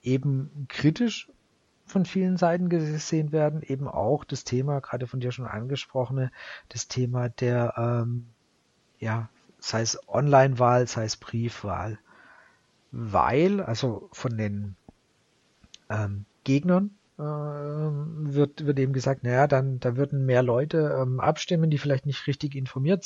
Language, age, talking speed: German, 40-59, 130 wpm